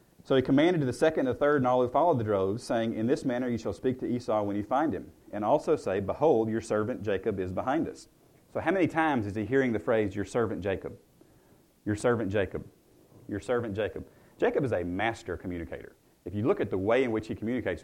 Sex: male